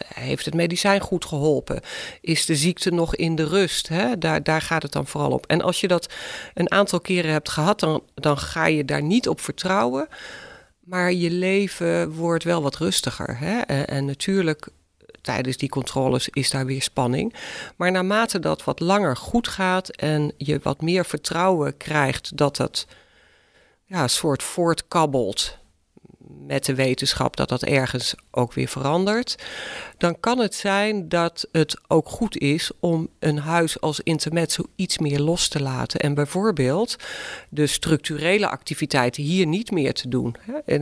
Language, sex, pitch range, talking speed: Dutch, female, 140-180 Hz, 165 wpm